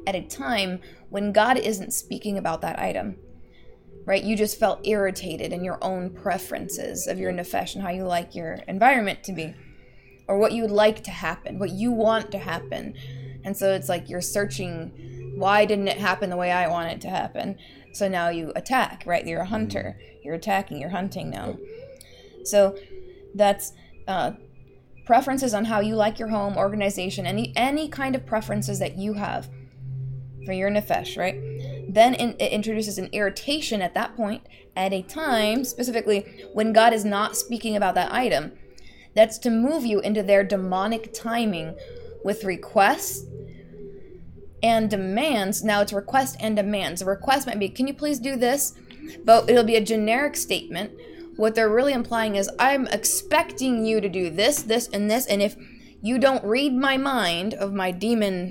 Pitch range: 190-235 Hz